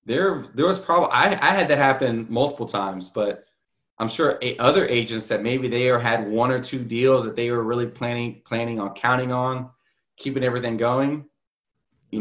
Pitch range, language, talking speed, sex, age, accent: 110-145 Hz, English, 190 wpm, male, 30-49, American